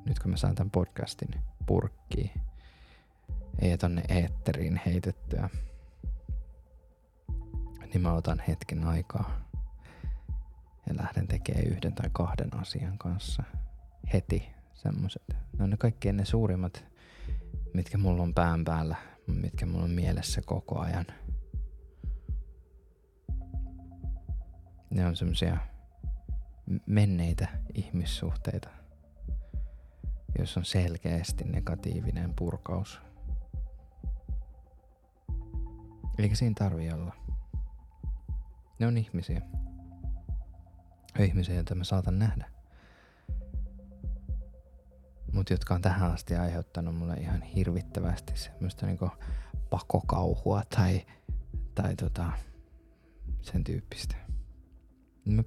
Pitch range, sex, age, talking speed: 75-95 Hz, male, 20-39, 90 wpm